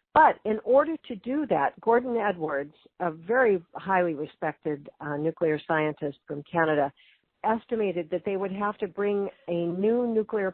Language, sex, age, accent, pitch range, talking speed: English, female, 50-69, American, 155-195 Hz, 155 wpm